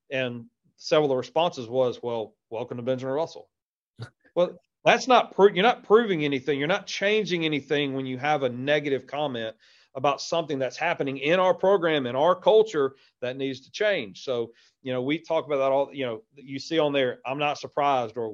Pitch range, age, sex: 130-160 Hz, 40-59, male